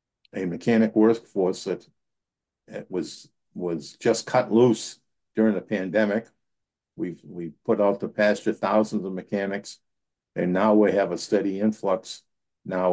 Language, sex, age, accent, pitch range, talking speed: English, male, 50-69, American, 95-110 Hz, 140 wpm